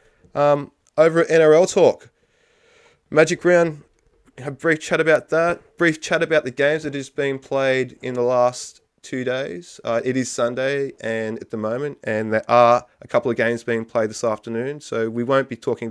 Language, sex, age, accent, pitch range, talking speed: English, male, 20-39, Australian, 115-145 Hz, 190 wpm